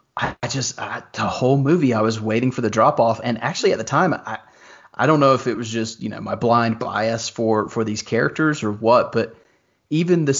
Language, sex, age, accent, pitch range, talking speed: English, male, 30-49, American, 115-135 Hz, 230 wpm